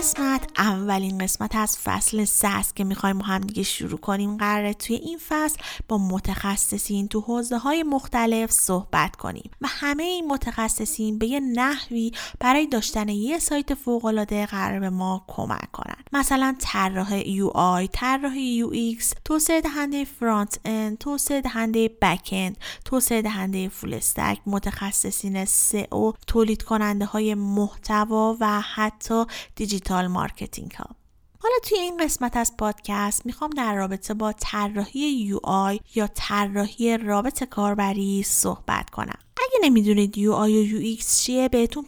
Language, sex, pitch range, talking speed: Persian, female, 200-255 Hz, 135 wpm